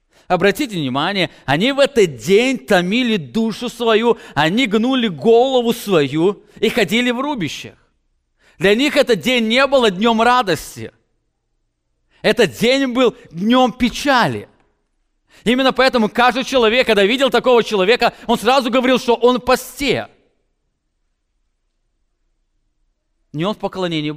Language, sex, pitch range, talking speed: English, male, 190-250 Hz, 120 wpm